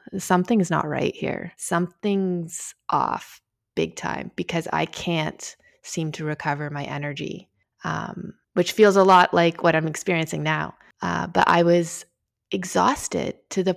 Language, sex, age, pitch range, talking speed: English, female, 20-39, 160-180 Hz, 145 wpm